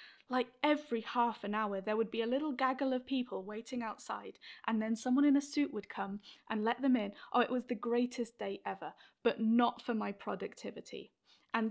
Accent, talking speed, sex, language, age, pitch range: British, 205 wpm, female, English, 10-29, 235-285 Hz